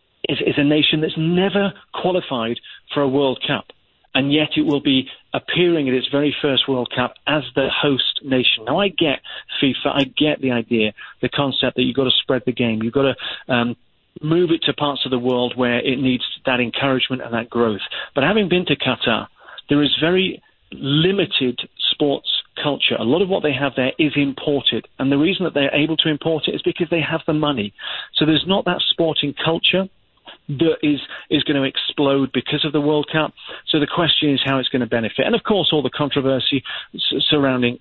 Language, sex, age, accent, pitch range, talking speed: English, male, 40-59, British, 125-150 Hz, 210 wpm